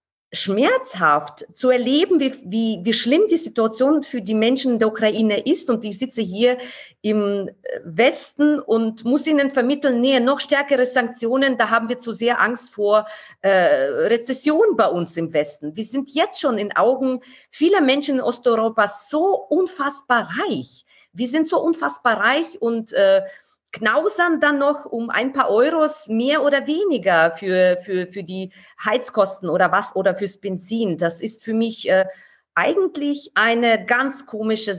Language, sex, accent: German, female, German